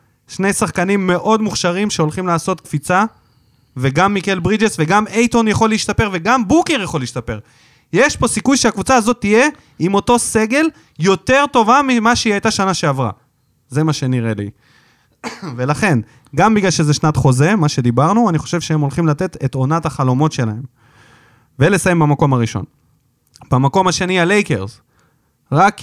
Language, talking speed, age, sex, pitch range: Hebrew, 145 wpm, 20-39, male, 130-205 Hz